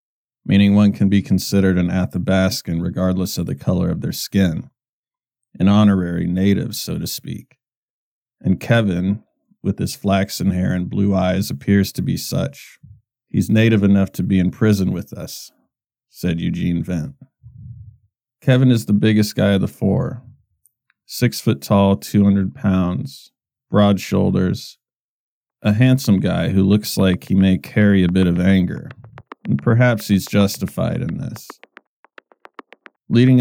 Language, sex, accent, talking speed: English, male, American, 145 wpm